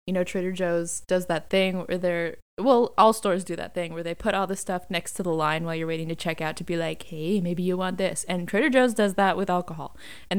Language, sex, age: English, female, 20-39